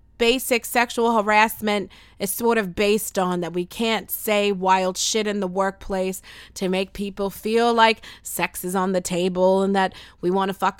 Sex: female